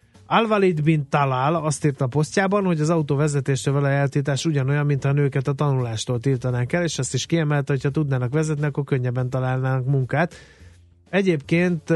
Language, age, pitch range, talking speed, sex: Hungarian, 30-49, 125-155 Hz, 160 wpm, male